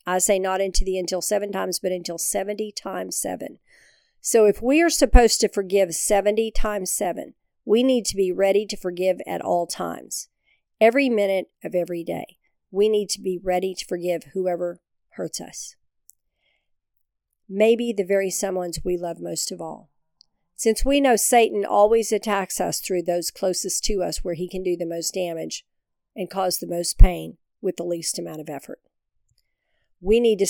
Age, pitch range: 50-69, 170-200 Hz